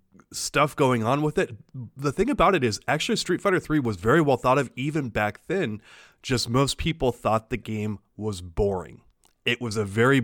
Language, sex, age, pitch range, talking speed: English, male, 30-49, 110-140 Hz, 200 wpm